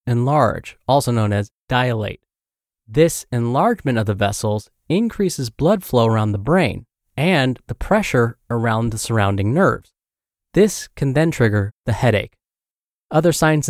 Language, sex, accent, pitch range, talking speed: English, male, American, 110-150 Hz, 135 wpm